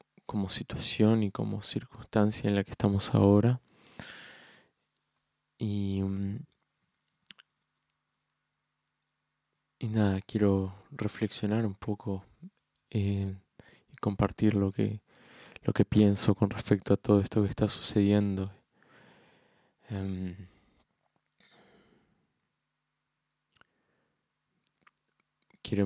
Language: English